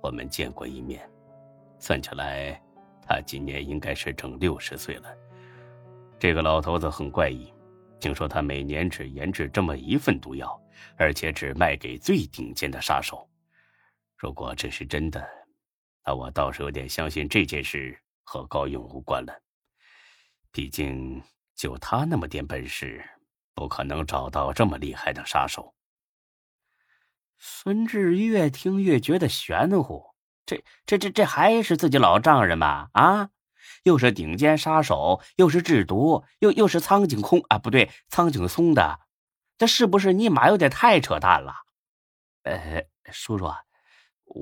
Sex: male